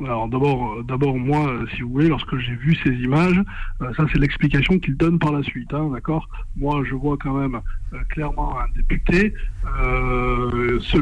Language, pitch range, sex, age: French, 130-160 Hz, male, 60-79